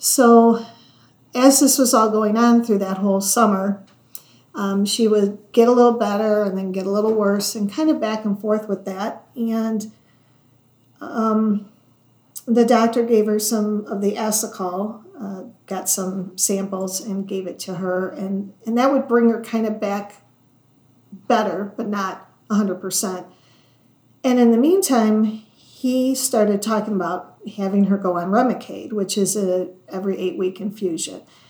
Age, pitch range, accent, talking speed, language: 40-59, 185-220 Hz, American, 155 wpm, English